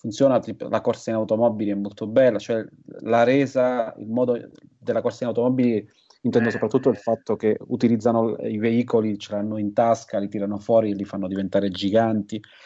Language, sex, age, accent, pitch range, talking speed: Italian, male, 30-49, native, 100-115 Hz, 175 wpm